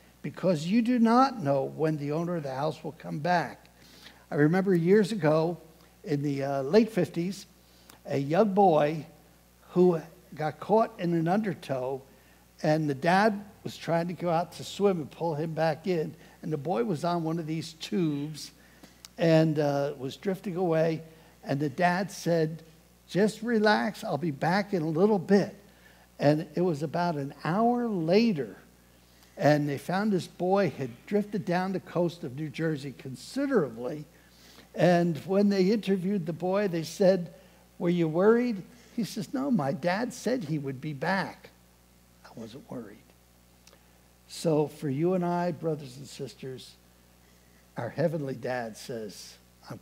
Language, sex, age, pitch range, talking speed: English, male, 60-79, 125-180 Hz, 160 wpm